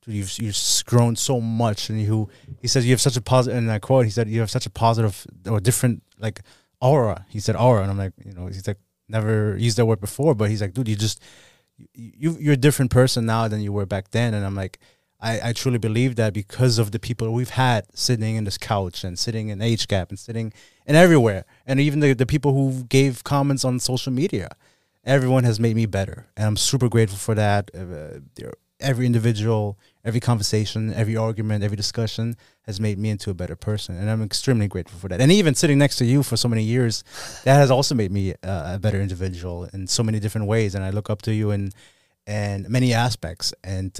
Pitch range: 100-125 Hz